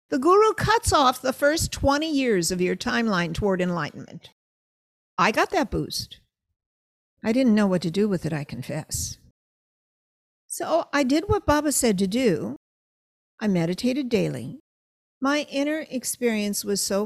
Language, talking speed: English, 150 wpm